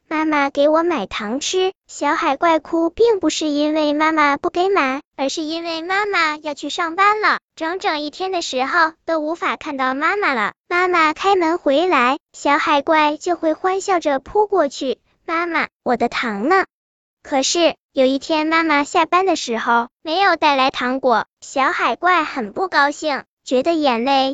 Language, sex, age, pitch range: Chinese, male, 10-29, 280-350 Hz